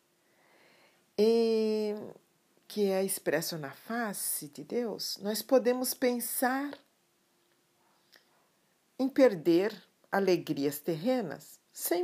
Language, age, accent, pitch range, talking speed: Portuguese, 50-69, Brazilian, 160-255 Hz, 75 wpm